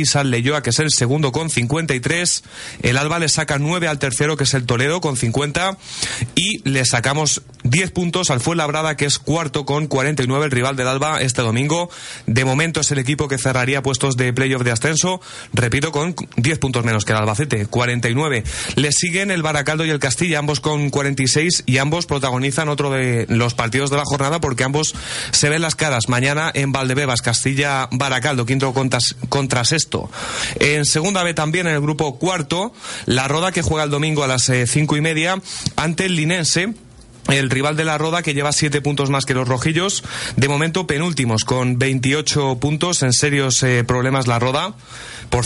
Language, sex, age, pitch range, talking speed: Spanish, male, 30-49, 125-155 Hz, 190 wpm